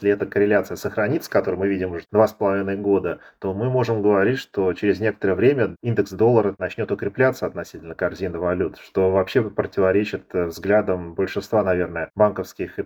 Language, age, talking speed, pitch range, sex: Russian, 30-49, 170 wpm, 95-105 Hz, male